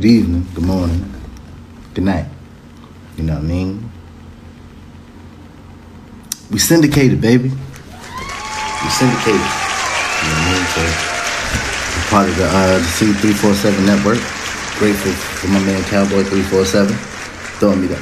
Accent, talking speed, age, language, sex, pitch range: American, 120 wpm, 30-49, English, male, 80-100 Hz